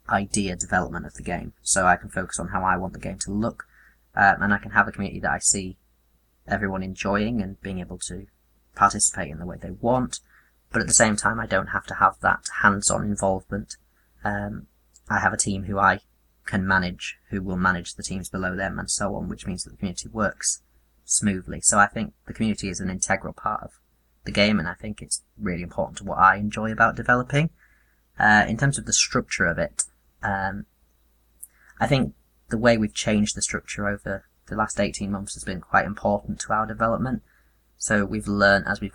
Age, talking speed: 20-39, 210 wpm